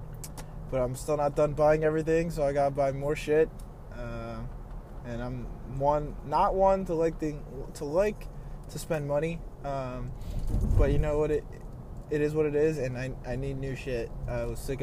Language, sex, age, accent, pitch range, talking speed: English, male, 20-39, American, 120-145 Hz, 185 wpm